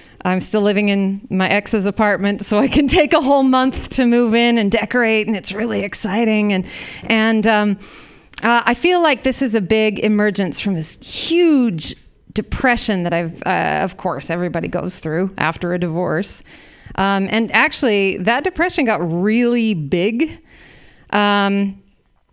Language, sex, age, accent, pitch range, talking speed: English, female, 30-49, American, 205-300 Hz, 160 wpm